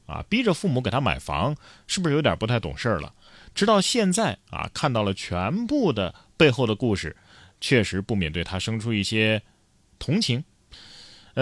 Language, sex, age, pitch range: Chinese, male, 30-49, 105-165 Hz